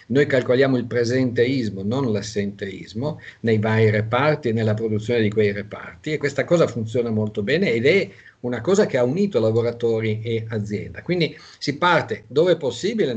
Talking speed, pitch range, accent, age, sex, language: 170 wpm, 110-140 Hz, native, 50-69, male, Italian